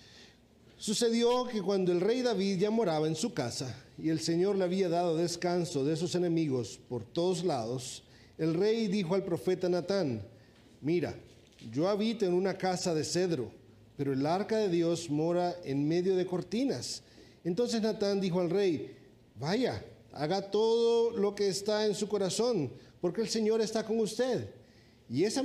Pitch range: 160-215 Hz